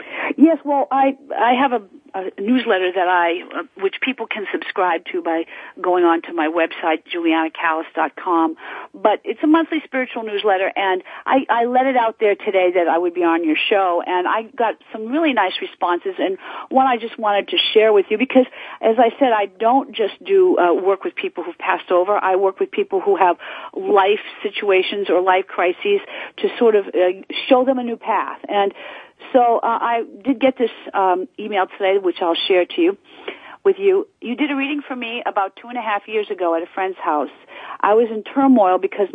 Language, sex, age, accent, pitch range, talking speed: English, female, 50-69, American, 195-320 Hz, 205 wpm